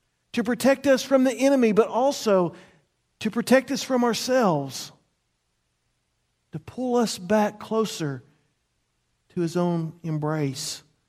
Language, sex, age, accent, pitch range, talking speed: English, male, 40-59, American, 135-210 Hz, 120 wpm